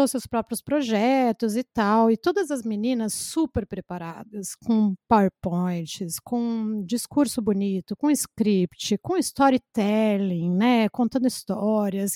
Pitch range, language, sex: 205-275 Hz, Portuguese, female